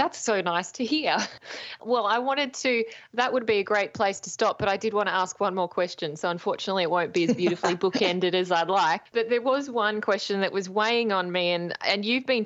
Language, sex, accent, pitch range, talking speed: English, female, Australian, 160-215 Hz, 245 wpm